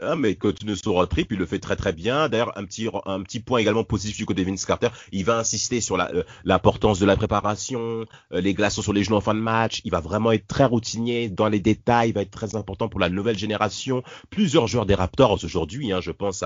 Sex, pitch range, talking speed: male, 95-115 Hz, 250 wpm